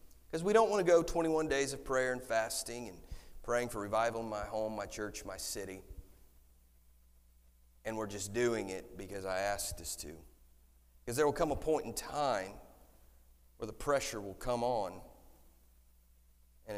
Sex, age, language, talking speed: male, 40-59, English, 170 wpm